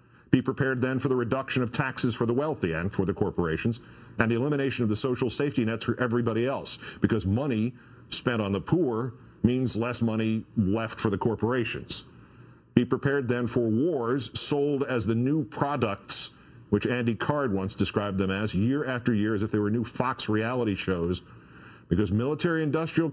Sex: male